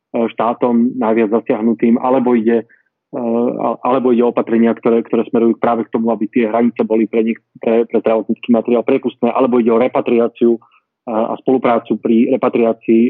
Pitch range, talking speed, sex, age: 110-120 Hz, 150 wpm, male, 30-49